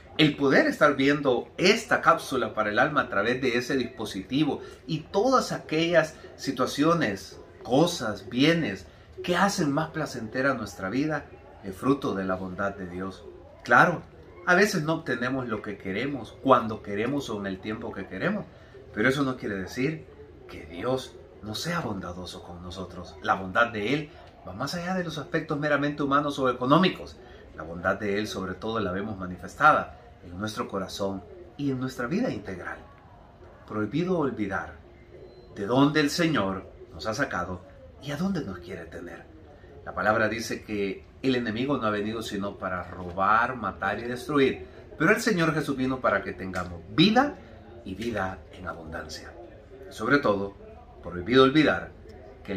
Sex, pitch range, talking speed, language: male, 95-140 Hz, 160 wpm, Spanish